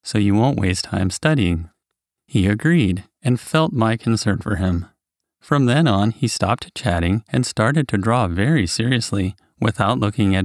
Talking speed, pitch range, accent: 165 wpm, 95-125 Hz, American